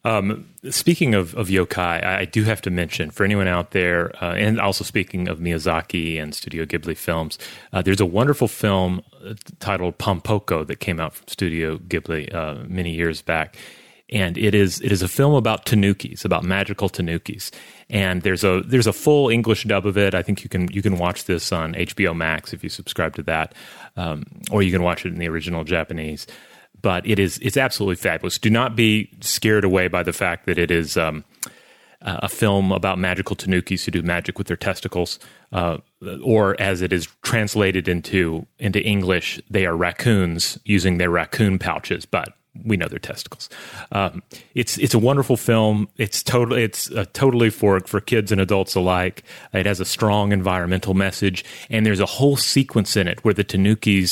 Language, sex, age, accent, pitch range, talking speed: English, male, 30-49, American, 90-110 Hz, 190 wpm